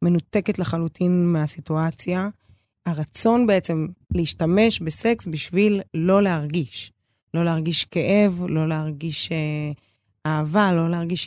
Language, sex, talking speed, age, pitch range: Hebrew, female, 100 wpm, 20-39, 150-195 Hz